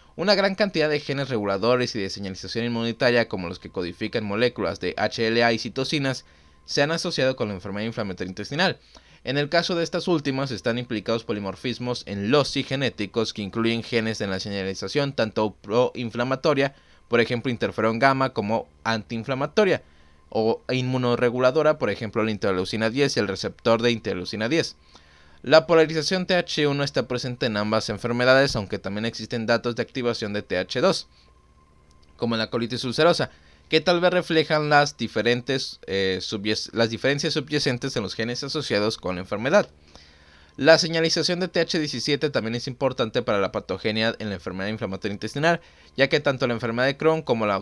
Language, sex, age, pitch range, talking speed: Spanish, male, 20-39, 105-140 Hz, 160 wpm